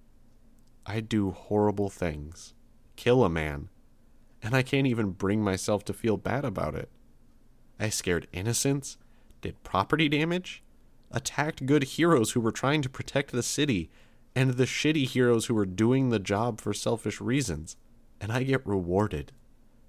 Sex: male